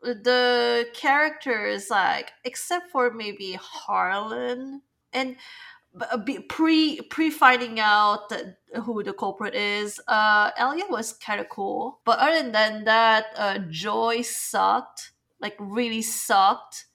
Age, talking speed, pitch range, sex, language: 20-39, 110 wpm, 210-250 Hz, female, English